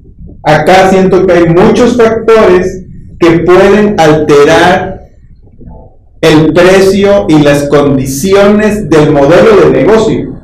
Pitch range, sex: 140-180 Hz, male